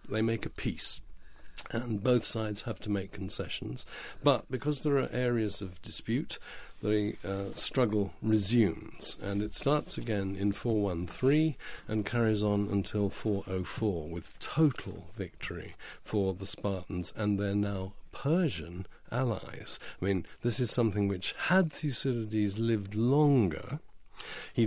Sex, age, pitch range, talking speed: male, 50-69, 100-130 Hz, 135 wpm